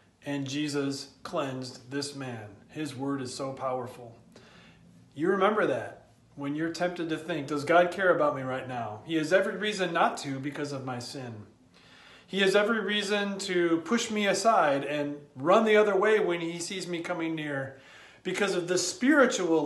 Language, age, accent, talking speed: English, 40-59, American, 175 wpm